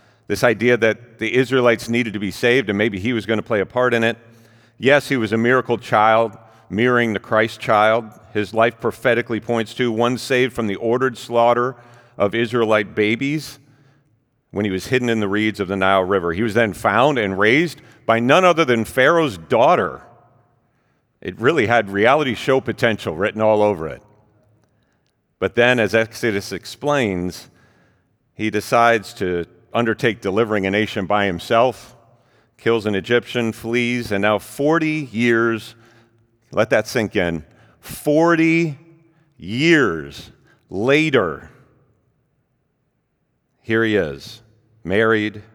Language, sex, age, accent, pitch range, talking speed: English, male, 40-59, American, 105-125 Hz, 145 wpm